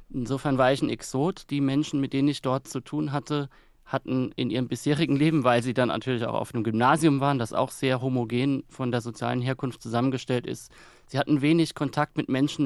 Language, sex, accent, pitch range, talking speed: German, male, German, 120-145 Hz, 210 wpm